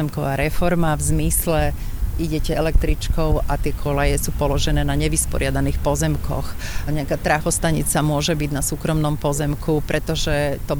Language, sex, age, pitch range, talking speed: Slovak, female, 40-59, 145-160 Hz, 130 wpm